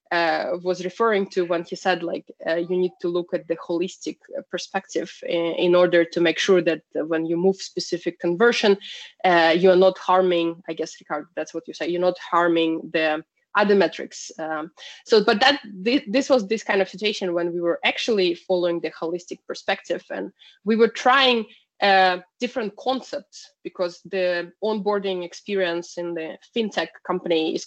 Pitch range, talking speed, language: 170-205 Hz, 175 wpm, English